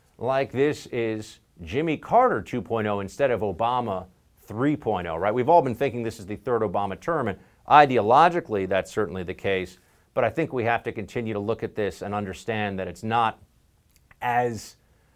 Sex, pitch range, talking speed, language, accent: male, 105-165 Hz, 175 wpm, English, American